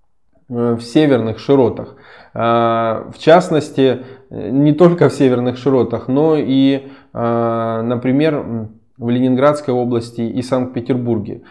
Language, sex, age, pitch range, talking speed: Russian, male, 20-39, 115-135 Hz, 95 wpm